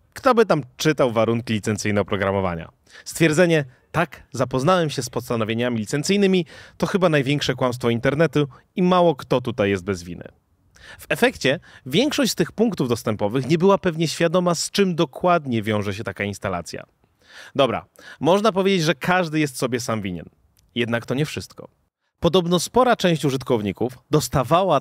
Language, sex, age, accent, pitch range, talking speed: Polish, male, 30-49, native, 115-180 Hz, 150 wpm